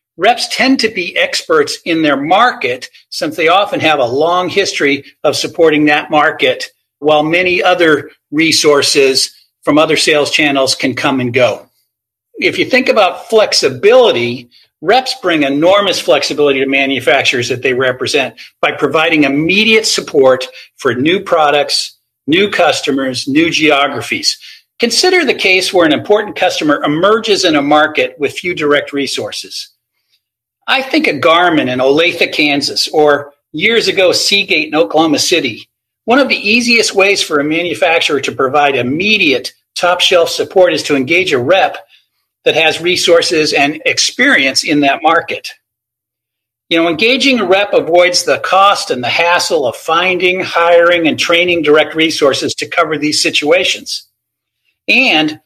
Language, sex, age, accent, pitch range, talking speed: English, male, 50-69, American, 150-225 Hz, 145 wpm